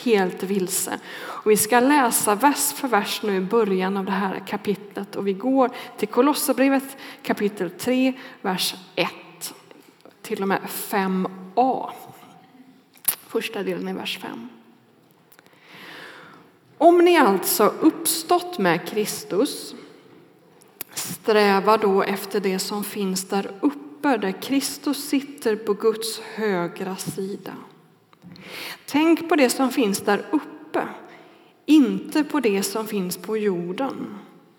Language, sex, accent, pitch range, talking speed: Swedish, female, native, 200-265 Hz, 120 wpm